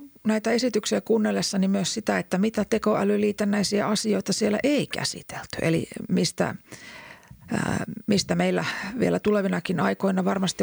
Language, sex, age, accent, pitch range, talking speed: Finnish, female, 40-59, native, 160-200 Hz, 115 wpm